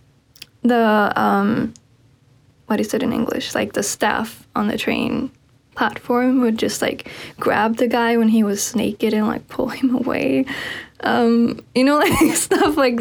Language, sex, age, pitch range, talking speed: English, female, 10-29, 205-240 Hz, 160 wpm